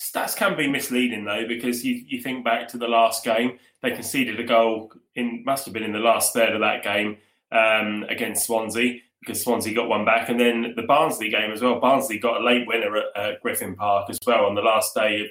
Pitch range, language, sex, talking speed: 110-125 Hz, English, male, 235 wpm